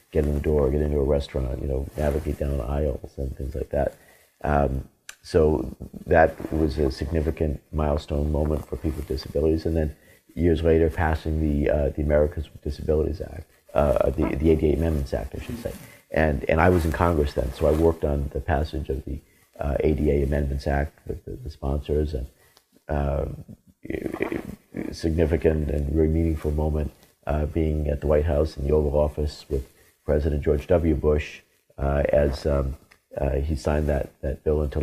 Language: English